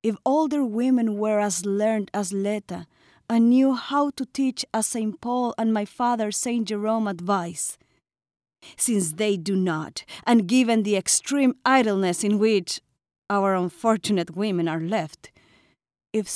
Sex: female